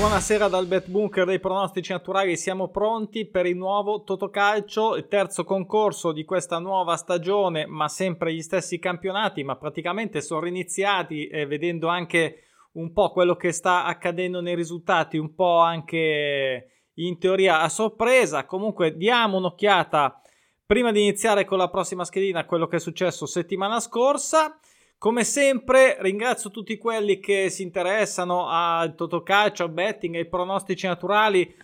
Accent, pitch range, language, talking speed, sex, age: native, 165-205 Hz, Italian, 150 wpm, male, 20-39